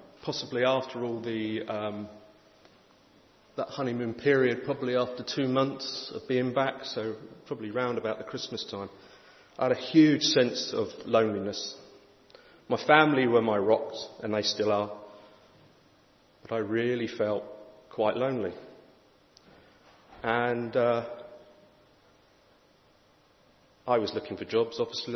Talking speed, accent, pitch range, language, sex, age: 125 wpm, British, 110-130 Hz, English, male, 40-59